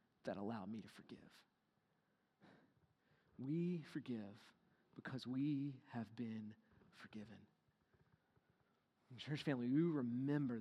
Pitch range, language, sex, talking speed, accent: 125-175 Hz, English, male, 95 wpm, American